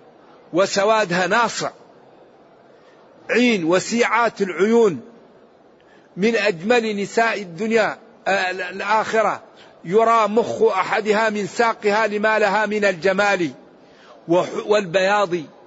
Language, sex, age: Arabic, male, 50-69